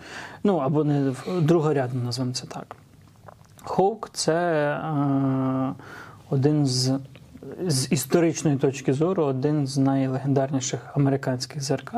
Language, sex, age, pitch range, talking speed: Ukrainian, male, 20-39, 135-160 Hz, 115 wpm